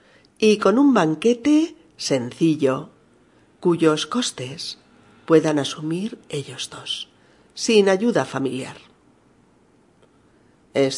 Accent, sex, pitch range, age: Spanish, female, 150-215 Hz, 40-59